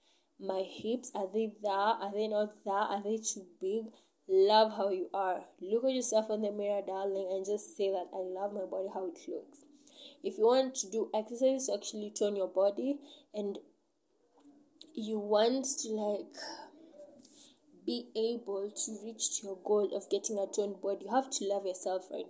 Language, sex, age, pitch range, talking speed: English, female, 20-39, 195-270 Hz, 185 wpm